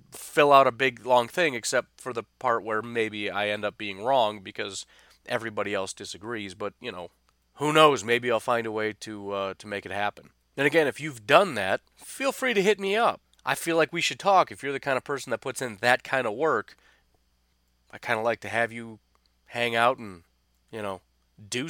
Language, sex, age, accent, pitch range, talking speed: English, male, 30-49, American, 90-140 Hz, 225 wpm